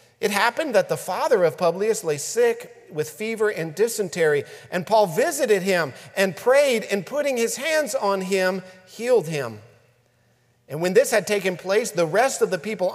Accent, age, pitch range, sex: American, 50-69, 145-210 Hz, male